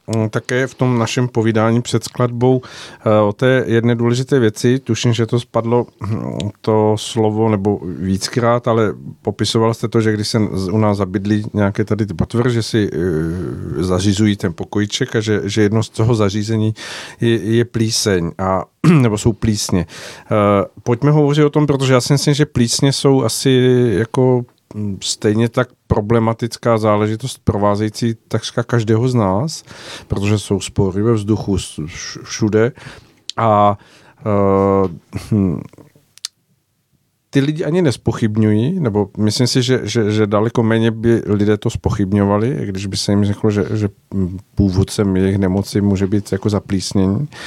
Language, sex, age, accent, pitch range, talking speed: Czech, male, 50-69, native, 105-125 Hz, 145 wpm